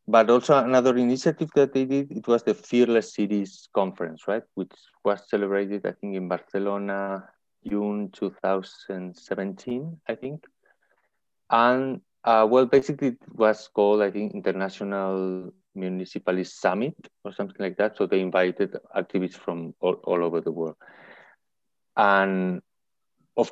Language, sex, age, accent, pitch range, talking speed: English, male, 30-49, Spanish, 90-110 Hz, 135 wpm